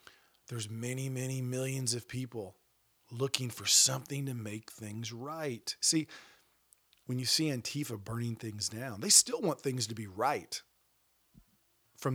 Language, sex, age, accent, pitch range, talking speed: English, male, 40-59, American, 115-145 Hz, 145 wpm